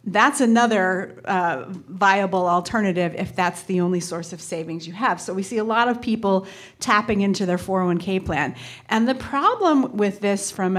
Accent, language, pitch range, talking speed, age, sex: American, English, 195-245 Hz, 180 wpm, 30-49, female